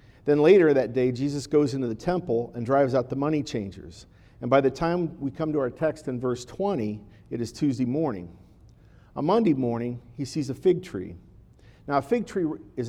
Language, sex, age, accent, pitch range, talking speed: English, male, 50-69, American, 115-150 Hz, 205 wpm